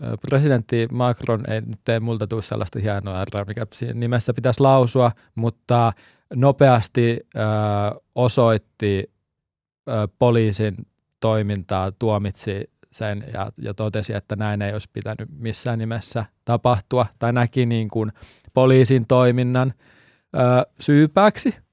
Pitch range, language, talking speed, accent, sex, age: 110-130 Hz, Finnish, 115 wpm, native, male, 20-39